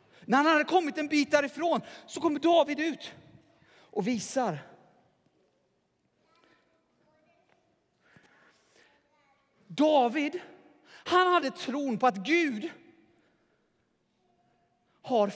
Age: 30-49